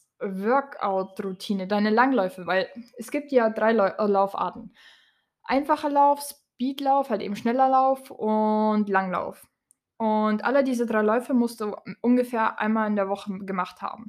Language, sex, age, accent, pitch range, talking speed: German, female, 20-39, German, 215-265 Hz, 135 wpm